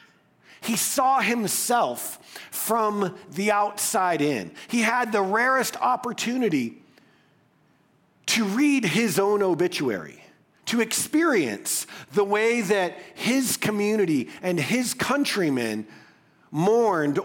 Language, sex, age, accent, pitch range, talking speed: English, male, 40-59, American, 180-235 Hz, 95 wpm